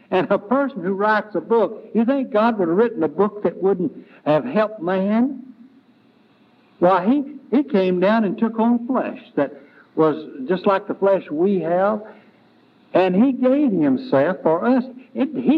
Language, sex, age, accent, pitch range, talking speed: English, male, 60-79, American, 175-255 Hz, 170 wpm